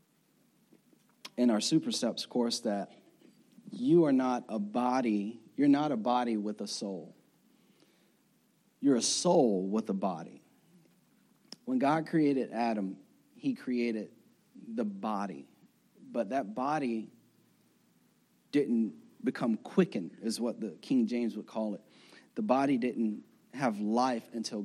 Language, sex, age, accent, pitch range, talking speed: English, male, 30-49, American, 110-165 Hz, 125 wpm